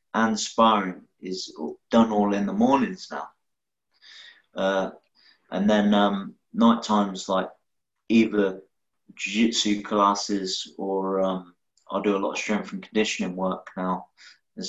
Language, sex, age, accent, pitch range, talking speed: English, male, 20-39, British, 95-120 Hz, 135 wpm